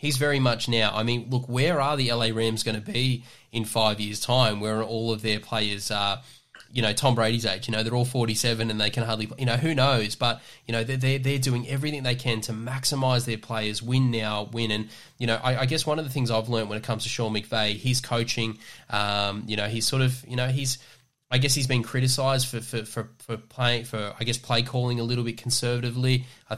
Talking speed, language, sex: 250 wpm, English, male